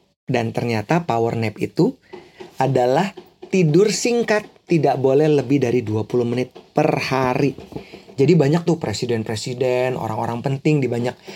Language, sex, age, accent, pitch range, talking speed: Indonesian, male, 30-49, native, 125-170 Hz, 125 wpm